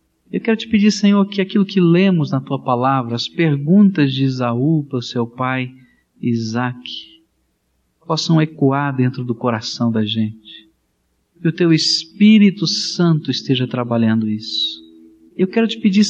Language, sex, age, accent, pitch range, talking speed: Portuguese, male, 50-69, Brazilian, 120-190 Hz, 150 wpm